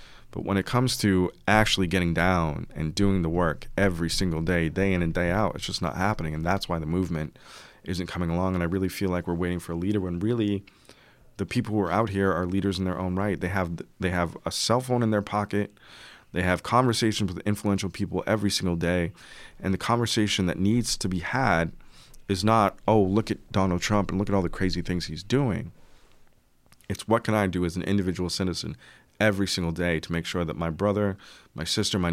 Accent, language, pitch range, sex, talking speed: American, English, 85-100 Hz, male, 225 wpm